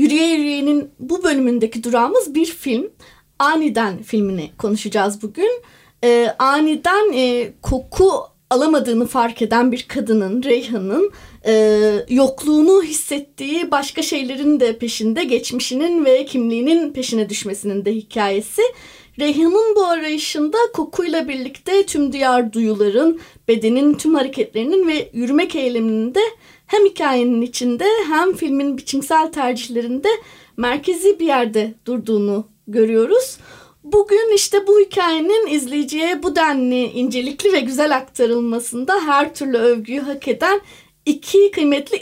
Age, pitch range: 30-49, 235-330 Hz